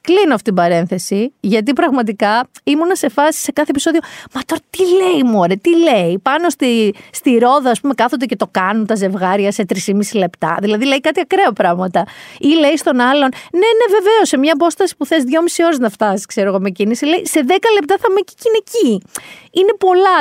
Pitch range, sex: 205-320 Hz, female